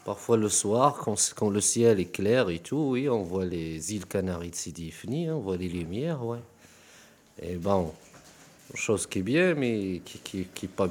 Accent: French